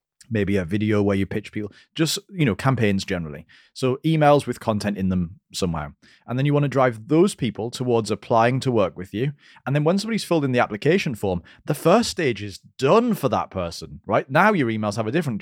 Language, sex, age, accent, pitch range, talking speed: English, male, 30-49, British, 95-130 Hz, 220 wpm